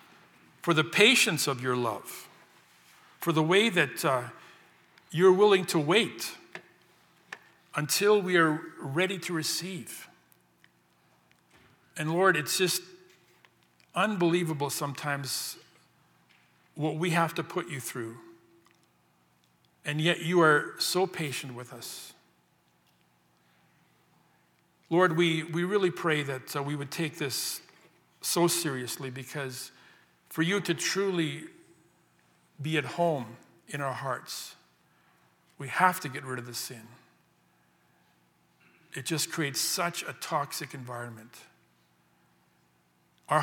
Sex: male